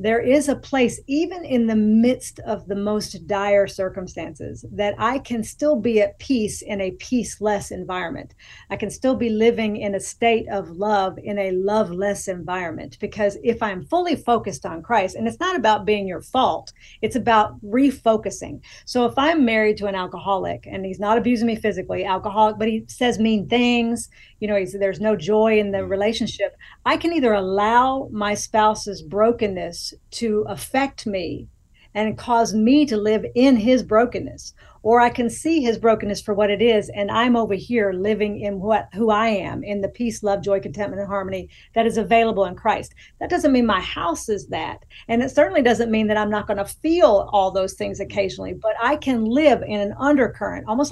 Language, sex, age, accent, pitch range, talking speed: English, female, 40-59, American, 200-240 Hz, 190 wpm